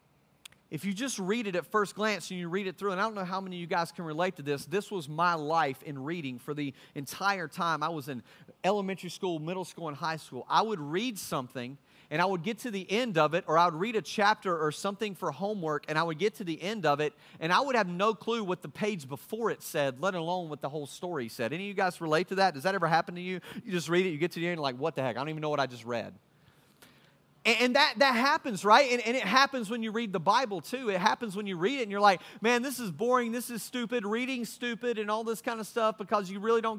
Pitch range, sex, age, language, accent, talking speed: 150-205 Hz, male, 40-59, English, American, 285 wpm